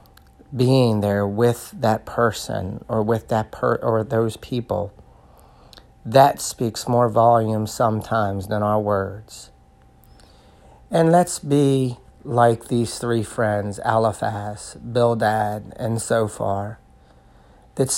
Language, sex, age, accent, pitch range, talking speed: English, male, 40-59, American, 100-120 Hz, 110 wpm